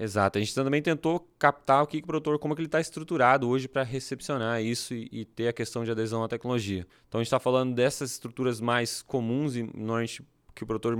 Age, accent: 20-39, Brazilian